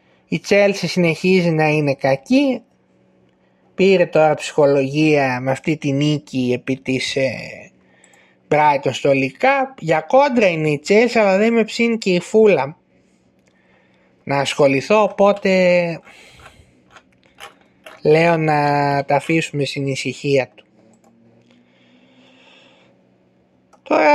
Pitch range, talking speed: 135-195 Hz, 95 wpm